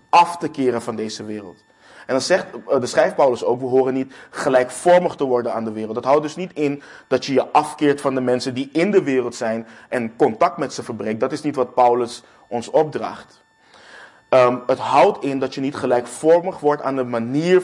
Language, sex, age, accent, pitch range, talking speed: Dutch, male, 20-39, Dutch, 120-155 Hz, 210 wpm